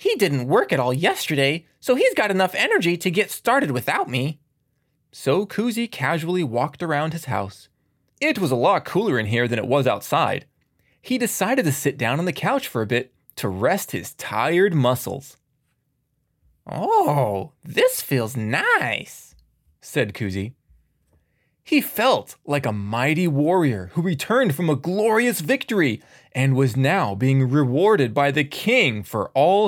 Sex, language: male, English